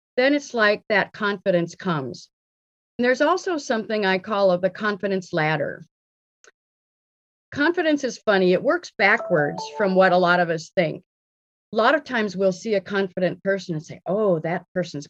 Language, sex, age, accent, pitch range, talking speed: English, female, 40-59, American, 190-255 Hz, 170 wpm